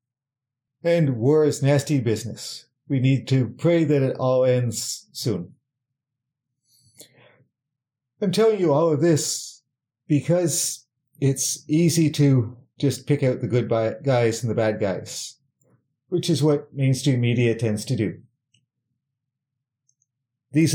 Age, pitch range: 50-69, 125-145 Hz